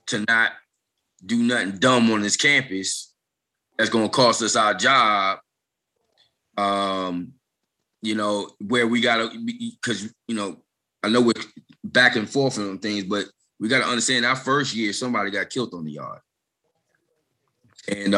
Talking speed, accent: 150 wpm, American